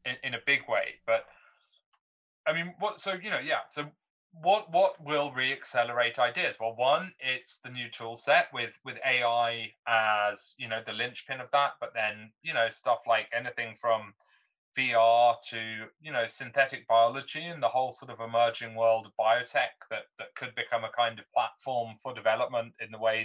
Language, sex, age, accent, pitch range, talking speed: English, male, 30-49, British, 120-165 Hz, 185 wpm